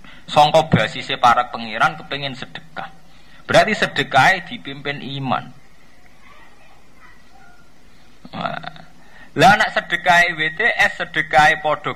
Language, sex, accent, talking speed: Indonesian, male, native, 95 wpm